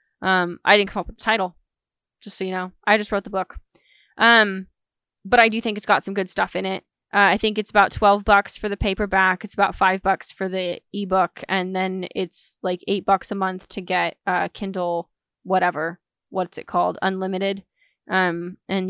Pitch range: 185-205 Hz